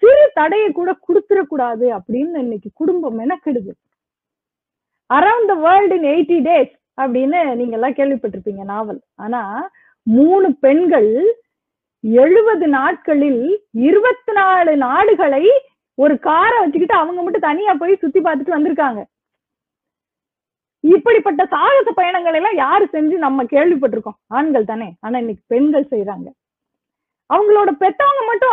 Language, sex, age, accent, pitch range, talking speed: Tamil, female, 30-49, native, 265-390 Hz, 60 wpm